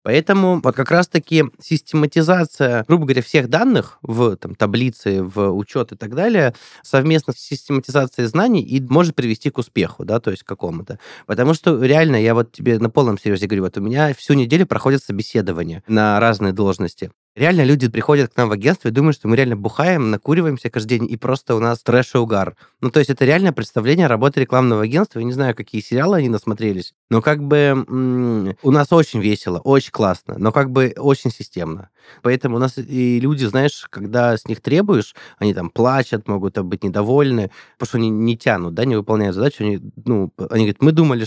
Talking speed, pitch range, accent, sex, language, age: 195 wpm, 110-145 Hz, native, male, Russian, 20-39